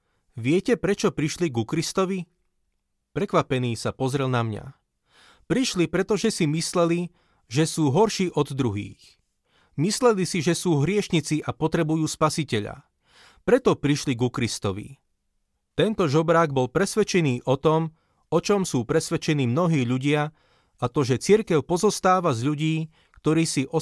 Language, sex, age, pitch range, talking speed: Slovak, male, 30-49, 130-175 Hz, 135 wpm